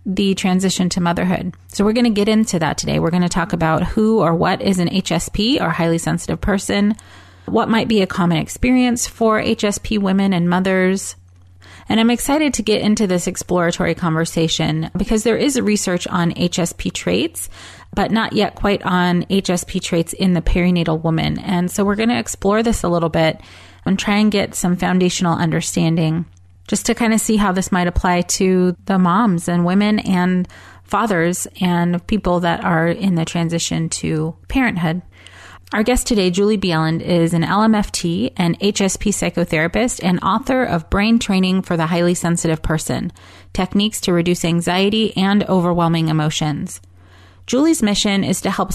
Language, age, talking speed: English, 30-49, 170 wpm